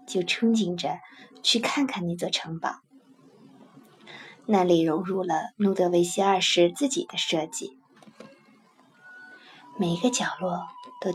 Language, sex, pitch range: Chinese, female, 175-270 Hz